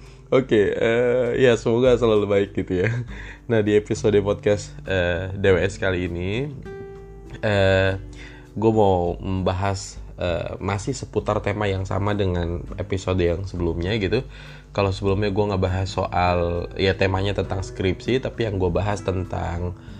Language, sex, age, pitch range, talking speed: Indonesian, male, 20-39, 95-115 Hz, 140 wpm